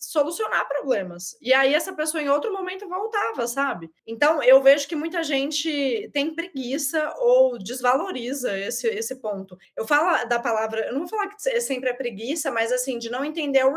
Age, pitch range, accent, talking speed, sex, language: 20-39, 230-310 Hz, Brazilian, 180 wpm, female, Portuguese